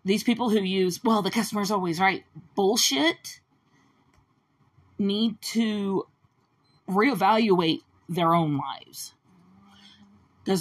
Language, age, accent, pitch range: English, 40-59, American, 150-200 Hz